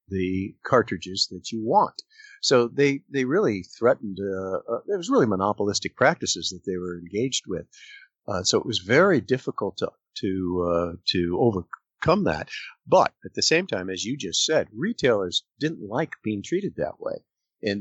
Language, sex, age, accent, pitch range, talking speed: English, male, 50-69, American, 95-115 Hz, 170 wpm